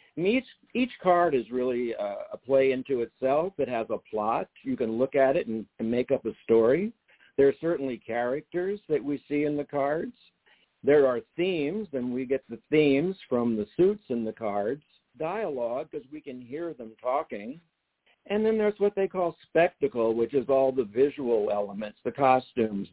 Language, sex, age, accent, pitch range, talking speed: English, male, 60-79, American, 115-160 Hz, 185 wpm